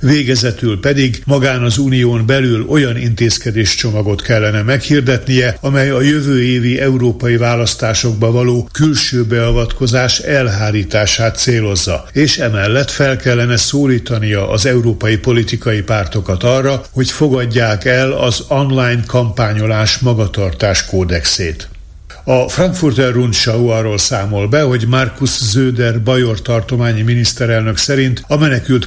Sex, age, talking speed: male, 60-79, 110 wpm